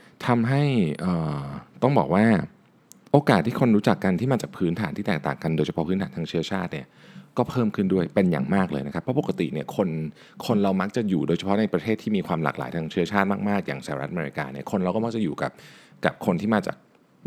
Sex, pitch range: male, 85-120 Hz